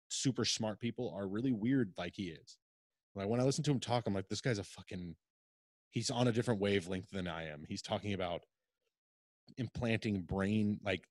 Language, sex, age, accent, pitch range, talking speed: English, male, 20-39, American, 95-115 Hz, 195 wpm